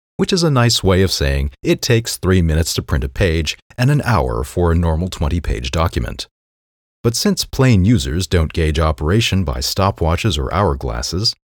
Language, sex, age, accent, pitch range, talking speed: English, male, 40-59, American, 70-115 Hz, 180 wpm